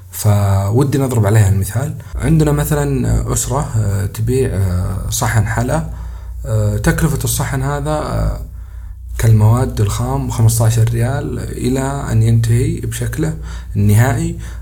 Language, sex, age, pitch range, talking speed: Arabic, male, 40-59, 105-135 Hz, 90 wpm